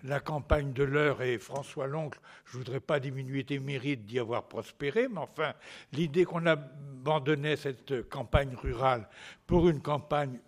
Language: French